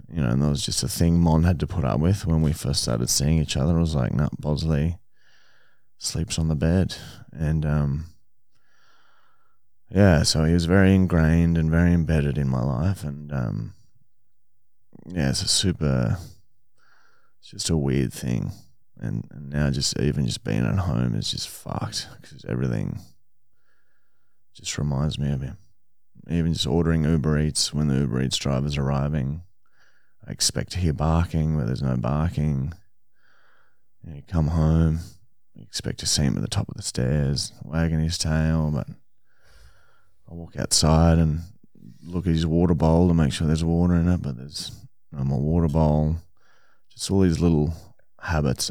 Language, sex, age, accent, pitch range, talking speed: English, male, 30-49, Australian, 75-85 Hz, 170 wpm